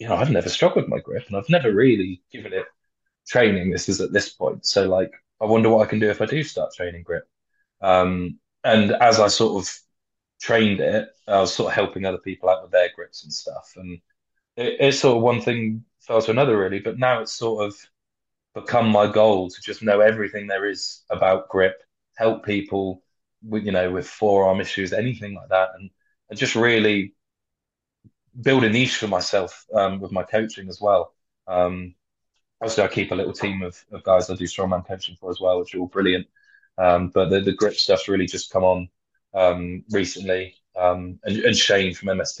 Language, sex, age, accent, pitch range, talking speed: English, male, 20-39, British, 90-110 Hz, 210 wpm